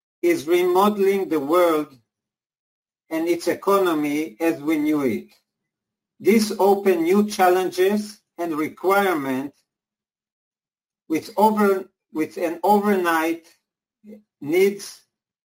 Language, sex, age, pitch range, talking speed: English, male, 50-69, 155-195 Hz, 90 wpm